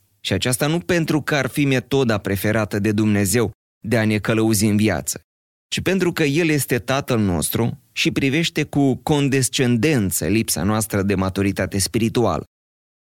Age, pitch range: 20-39, 100-135 Hz